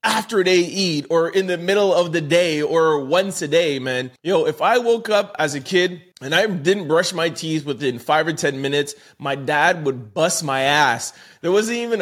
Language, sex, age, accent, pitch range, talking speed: English, male, 30-49, American, 155-225 Hz, 220 wpm